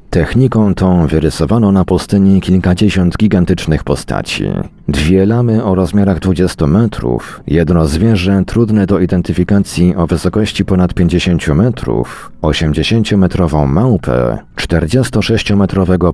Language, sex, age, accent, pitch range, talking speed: Polish, male, 40-59, native, 80-100 Hz, 100 wpm